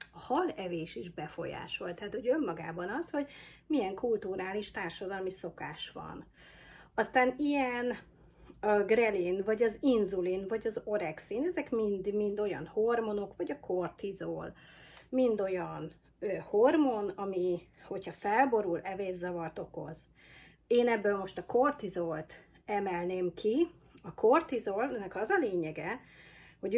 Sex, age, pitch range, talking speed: female, 30-49, 180-235 Hz, 120 wpm